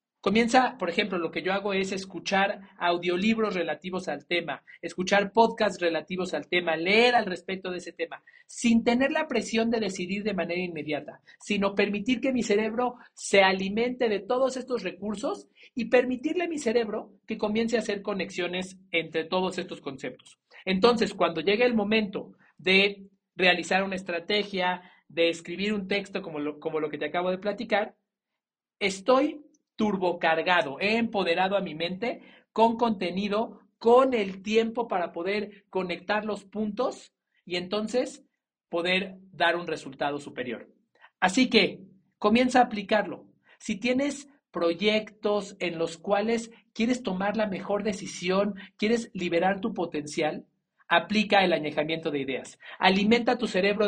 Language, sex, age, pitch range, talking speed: Spanish, male, 50-69, 180-225 Hz, 145 wpm